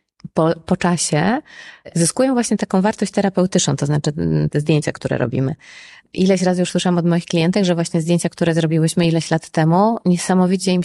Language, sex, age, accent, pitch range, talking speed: Polish, female, 20-39, native, 155-185 Hz, 165 wpm